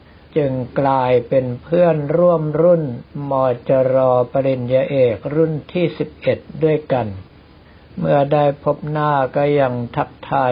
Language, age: Thai, 60-79